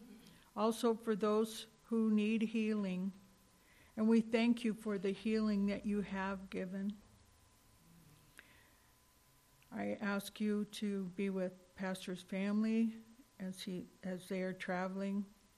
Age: 60-79